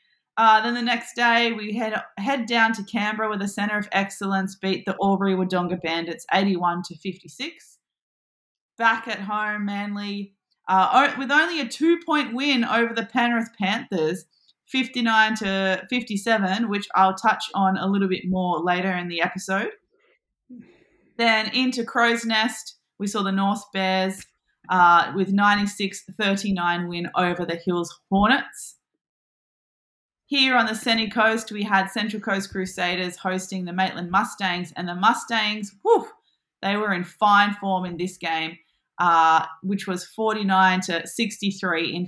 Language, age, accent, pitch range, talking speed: English, 20-39, Australian, 180-225 Hz, 140 wpm